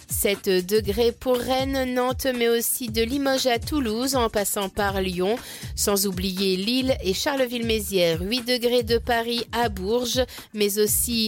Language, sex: French, female